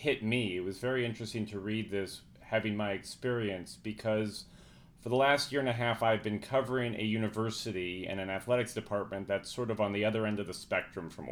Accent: American